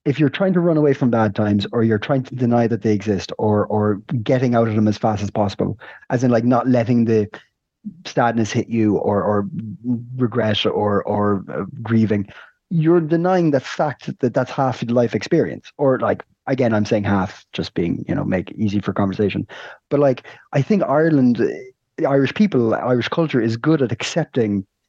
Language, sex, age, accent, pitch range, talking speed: English, male, 30-49, Irish, 110-145 Hz, 200 wpm